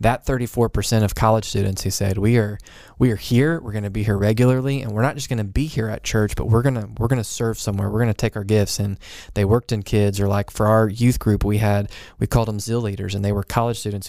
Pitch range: 105-120 Hz